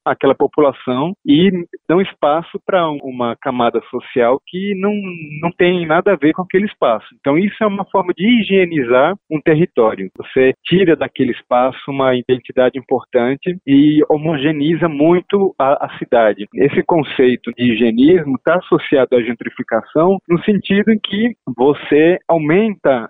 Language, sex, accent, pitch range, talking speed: Portuguese, male, Brazilian, 130-175 Hz, 145 wpm